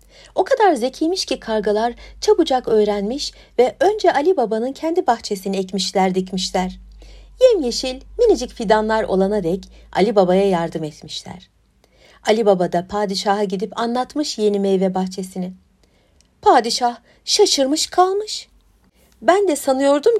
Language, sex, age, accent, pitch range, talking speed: Turkish, female, 60-79, native, 195-290 Hz, 115 wpm